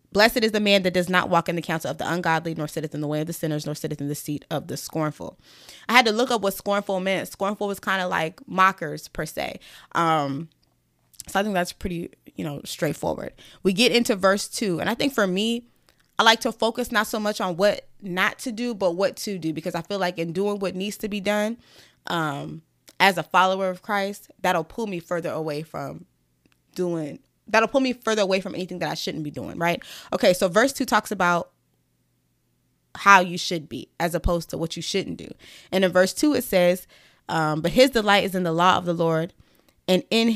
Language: English